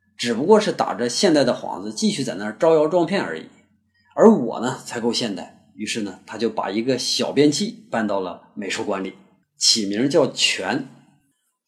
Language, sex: Chinese, male